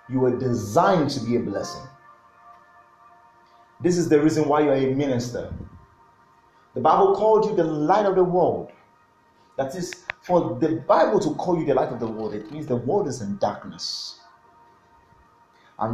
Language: English